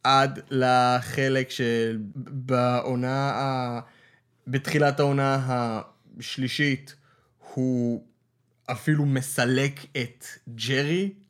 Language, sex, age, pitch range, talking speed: Hebrew, male, 20-39, 120-150 Hz, 55 wpm